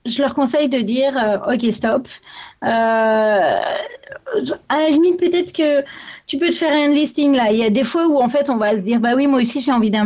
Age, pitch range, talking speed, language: 30-49, 215-285 Hz, 240 wpm, French